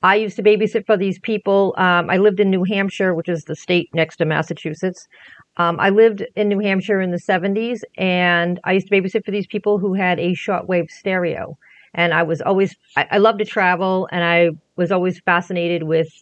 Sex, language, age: female, English, 40-59